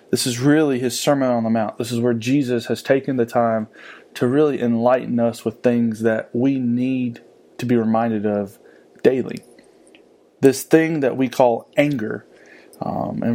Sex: male